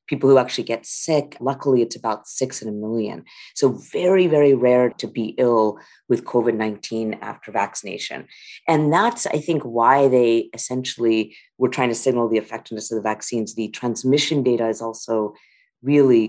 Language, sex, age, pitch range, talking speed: English, female, 30-49, 110-135 Hz, 165 wpm